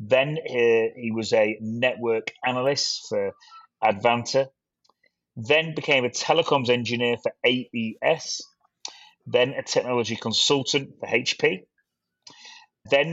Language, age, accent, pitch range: English, 30-49, British, 110-140 Hz